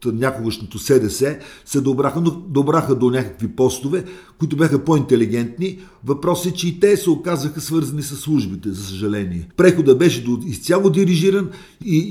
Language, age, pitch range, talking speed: Bulgarian, 50-69, 125-175 Hz, 145 wpm